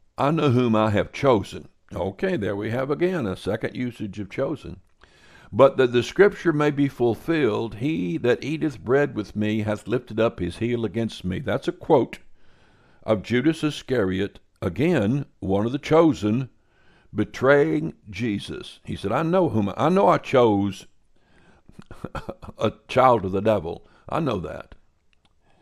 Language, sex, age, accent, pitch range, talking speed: English, male, 60-79, American, 105-145 Hz, 155 wpm